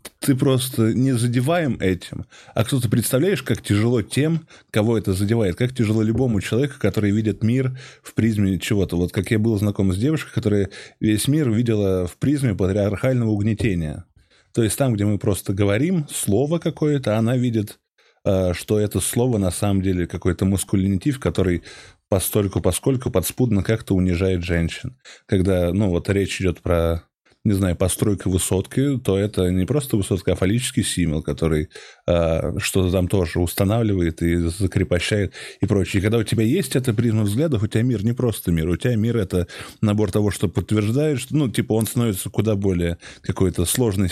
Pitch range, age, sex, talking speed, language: 95-120 Hz, 20-39, male, 170 wpm, Russian